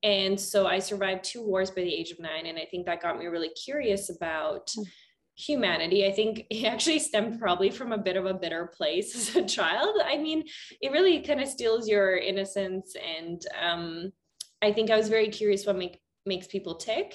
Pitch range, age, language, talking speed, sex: 175-220 Hz, 20-39, English, 205 wpm, female